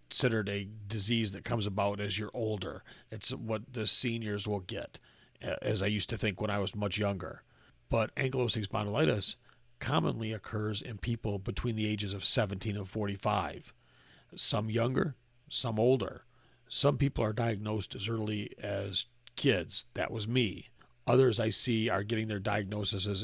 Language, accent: English, American